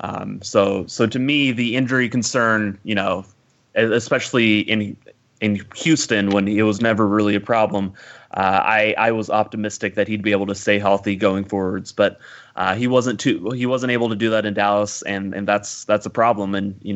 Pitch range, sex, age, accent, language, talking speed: 100-115 Hz, male, 20-39, American, English, 200 wpm